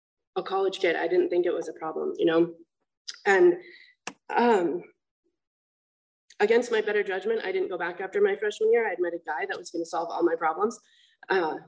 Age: 20-39